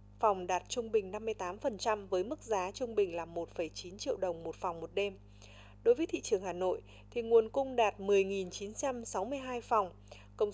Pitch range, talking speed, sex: 180-255 Hz, 175 wpm, female